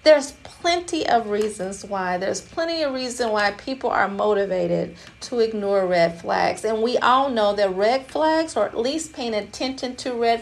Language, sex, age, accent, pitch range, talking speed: English, female, 40-59, American, 215-265 Hz, 180 wpm